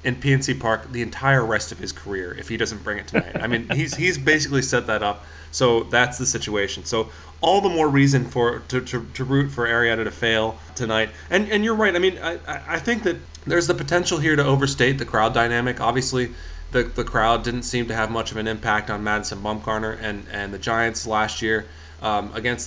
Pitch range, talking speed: 110-135 Hz, 220 wpm